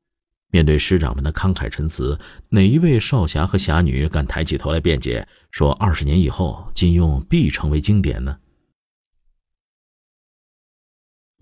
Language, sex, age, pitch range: Chinese, male, 50-69, 75-110 Hz